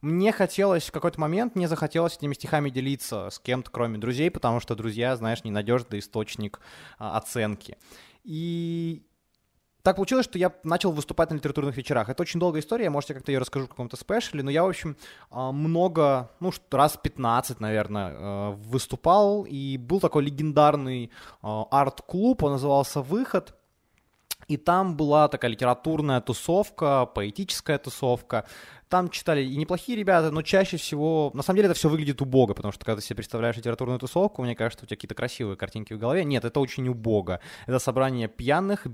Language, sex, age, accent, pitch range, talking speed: Ukrainian, male, 20-39, native, 115-165 Hz, 170 wpm